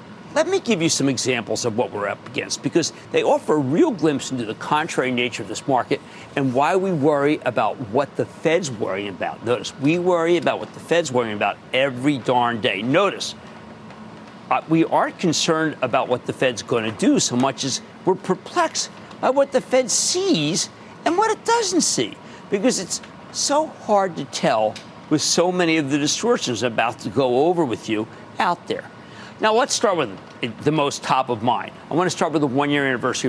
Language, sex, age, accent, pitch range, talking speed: English, male, 50-69, American, 130-190 Hz, 200 wpm